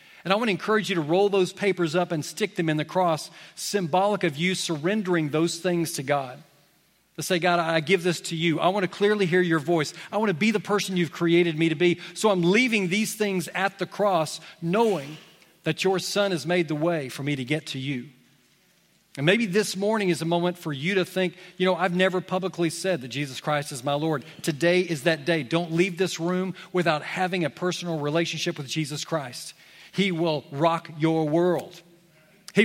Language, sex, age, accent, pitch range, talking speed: English, male, 40-59, American, 150-180 Hz, 215 wpm